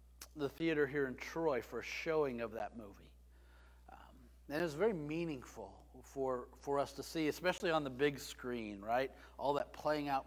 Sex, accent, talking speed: male, American, 185 wpm